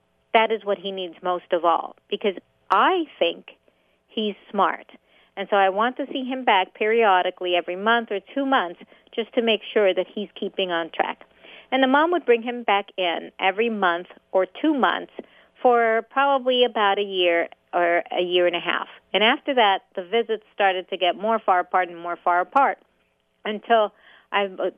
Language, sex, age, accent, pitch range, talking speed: English, female, 40-59, American, 180-230 Hz, 185 wpm